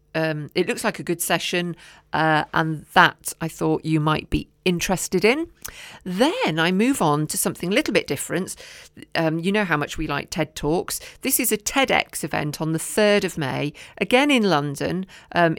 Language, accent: English, British